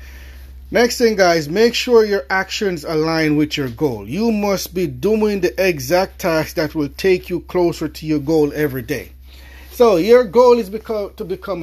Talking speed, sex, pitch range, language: 175 wpm, male, 135-205 Hz, English